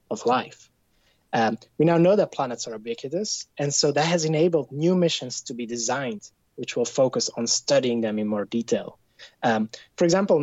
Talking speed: 185 wpm